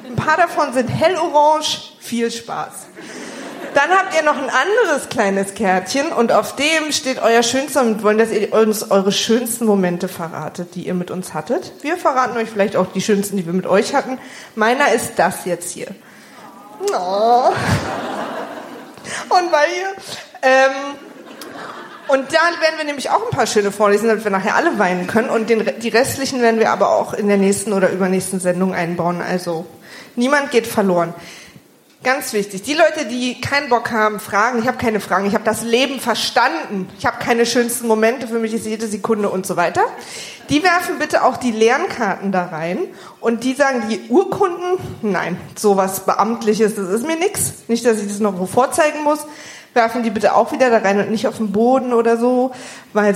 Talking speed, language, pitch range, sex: 190 wpm, German, 200-270 Hz, female